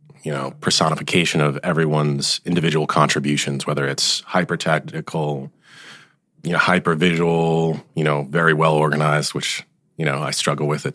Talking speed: 150 wpm